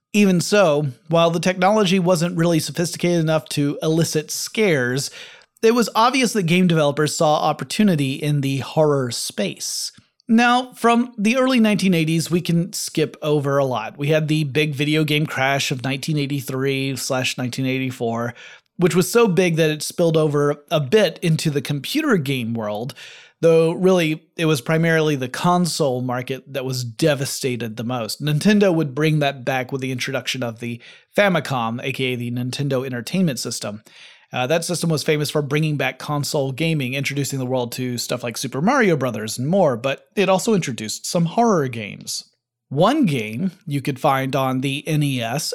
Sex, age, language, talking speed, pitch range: male, 30-49, English, 165 wpm, 130-175 Hz